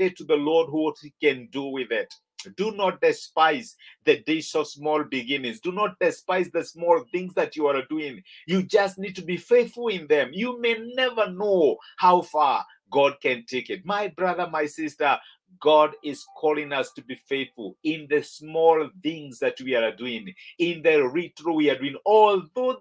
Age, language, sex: 50-69, English, male